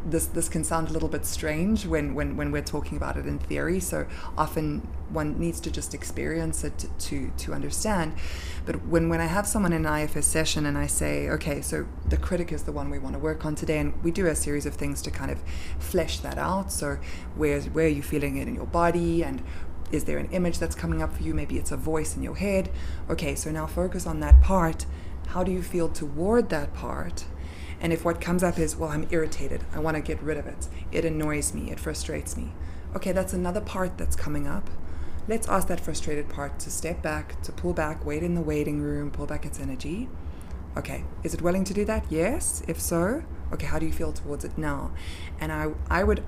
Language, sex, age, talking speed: English, female, 20-39, 230 wpm